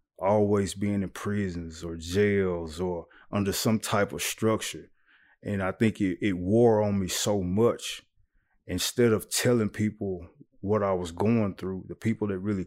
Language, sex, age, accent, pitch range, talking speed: English, male, 20-39, American, 90-105 Hz, 165 wpm